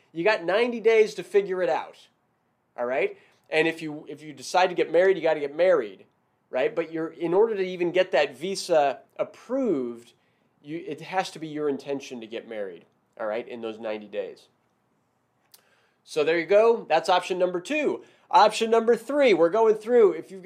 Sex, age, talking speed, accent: male, 30-49, 195 wpm, American